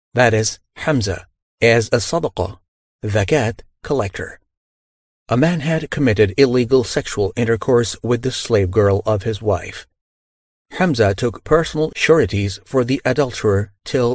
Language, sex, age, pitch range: English, male, 40-59, 95-130 Hz